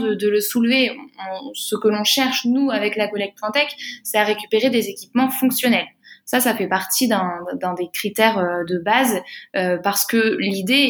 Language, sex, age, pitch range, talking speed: French, female, 20-39, 205-250 Hz, 180 wpm